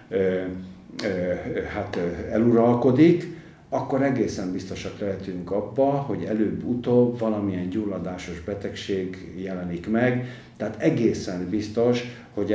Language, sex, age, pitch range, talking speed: Hungarian, male, 50-69, 95-120 Hz, 85 wpm